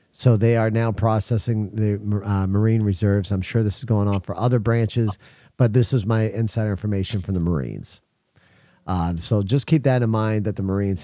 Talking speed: 200 wpm